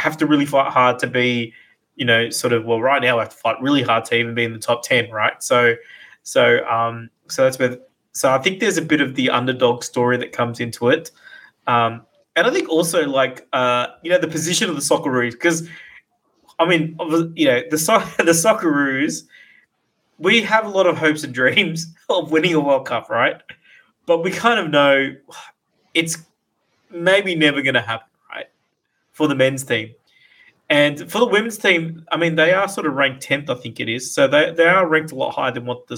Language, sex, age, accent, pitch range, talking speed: English, male, 20-39, Australian, 125-160 Hz, 215 wpm